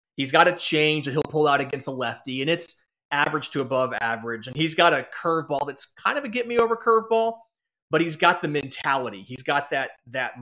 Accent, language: American, English